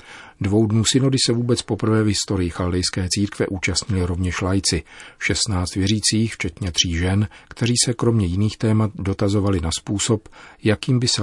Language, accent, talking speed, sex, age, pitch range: Czech, native, 155 wpm, male, 40-59, 90-105 Hz